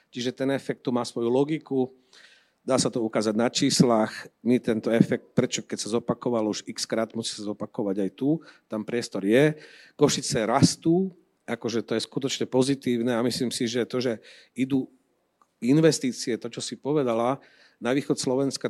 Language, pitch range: Slovak, 115-135 Hz